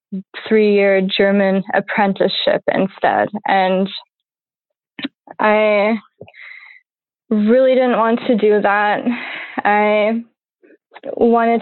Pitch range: 205-240 Hz